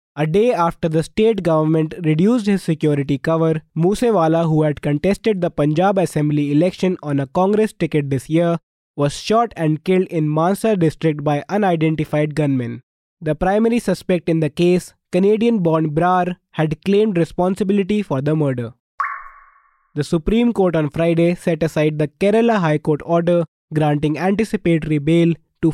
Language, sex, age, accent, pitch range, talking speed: English, male, 20-39, Indian, 150-190 Hz, 150 wpm